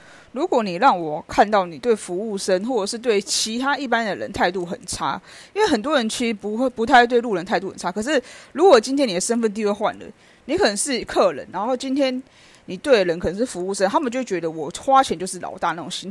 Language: Chinese